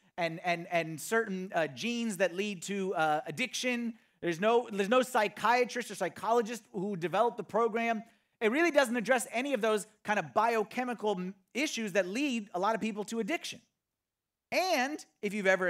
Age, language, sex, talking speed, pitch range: 30-49, English, male, 170 wpm, 185-250 Hz